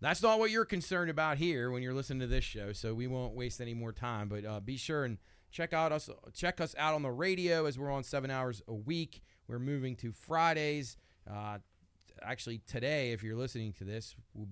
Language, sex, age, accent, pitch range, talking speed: English, male, 30-49, American, 105-135 Hz, 225 wpm